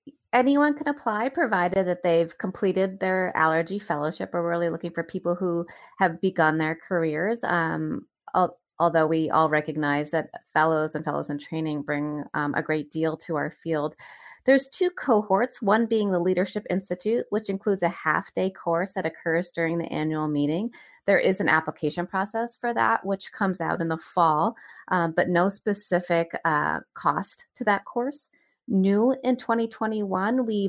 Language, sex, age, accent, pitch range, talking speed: English, female, 30-49, American, 160-210 Hz, 160 wpm